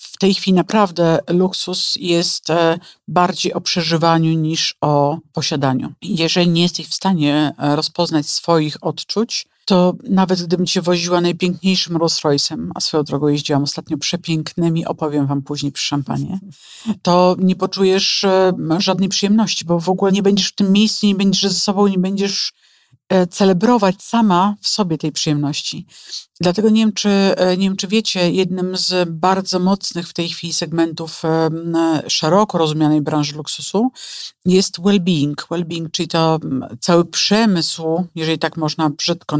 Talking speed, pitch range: 145 wpm, 155-185 Hz